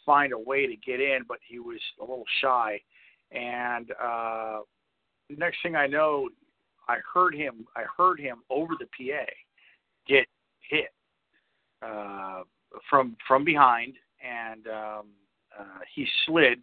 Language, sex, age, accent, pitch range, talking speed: English, male, 50-69, American, 115-155 Hz, 135 wpm